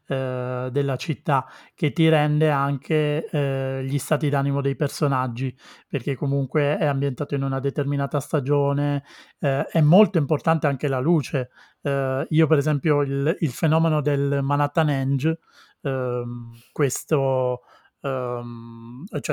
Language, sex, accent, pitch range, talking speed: Italian, male, native, 130-155 Hz, 125 wpm